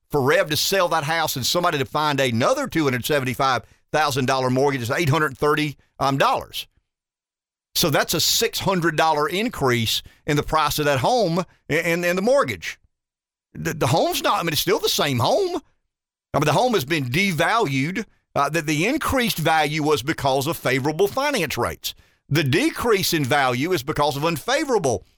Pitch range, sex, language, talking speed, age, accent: 135-170 Hz, male, English, 160 wpm, 50-69, American